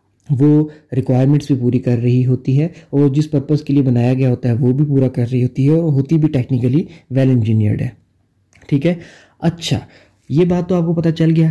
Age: 30-49